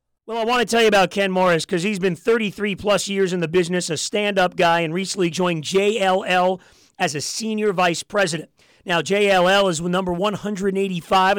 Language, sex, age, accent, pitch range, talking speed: English, male, 40-59, American, 180-215 Hz, 180 wpm